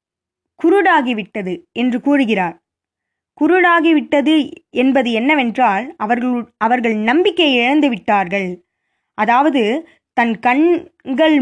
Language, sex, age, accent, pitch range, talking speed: Tamil, female, 20-39, native, 225-310 Hz, 70 wpm